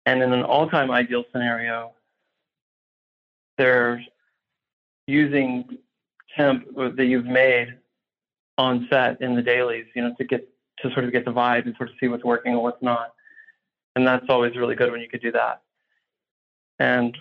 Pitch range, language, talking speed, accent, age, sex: 120-130 Hz, English, 165 wpm, American, 40-59, male